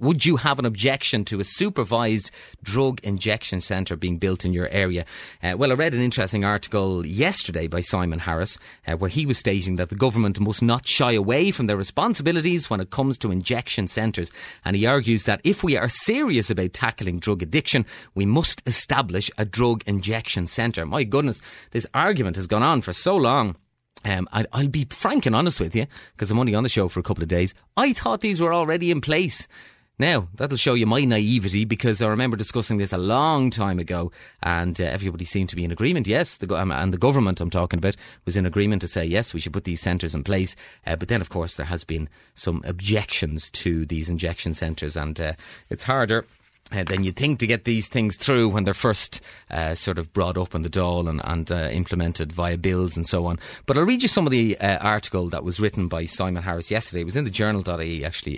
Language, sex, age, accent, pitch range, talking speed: English, male, 30-49, Irish, 90-120 Hz, 220 wpm